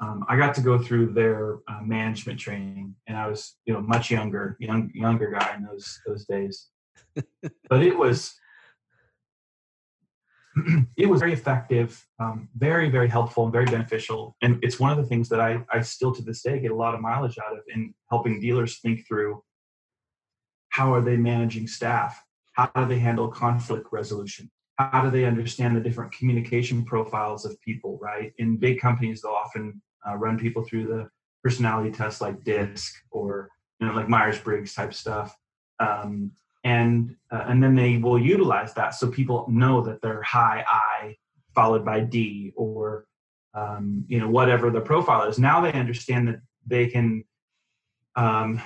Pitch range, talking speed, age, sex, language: 110-125 Hz, 175 wpm, 30-49, male, English